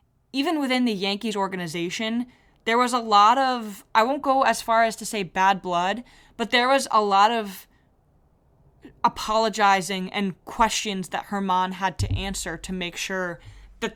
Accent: American